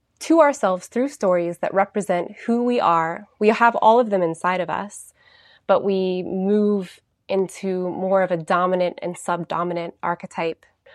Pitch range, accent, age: 180-220 Hz, American, 20-39